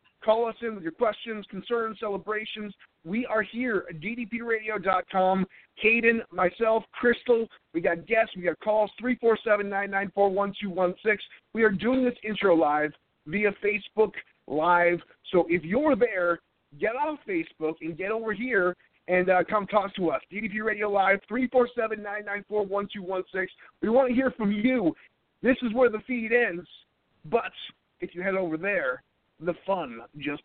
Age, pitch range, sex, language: 50-69, 165-225 Hz, male, English